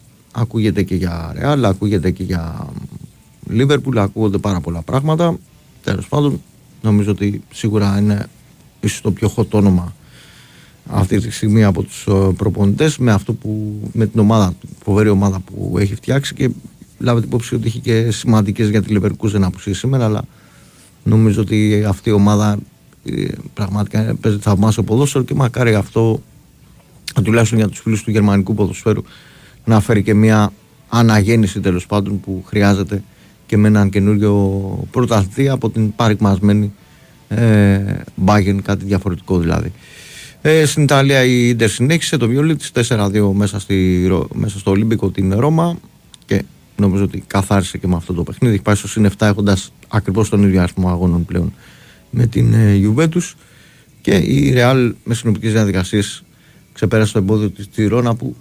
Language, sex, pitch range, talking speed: Greek, male, 100-115 Hz, 150 wpm